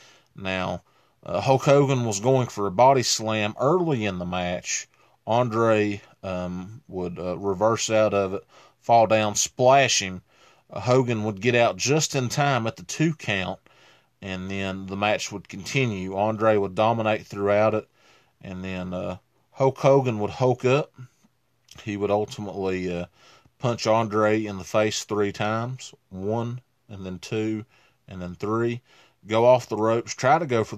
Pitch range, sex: 95-115 Hz, male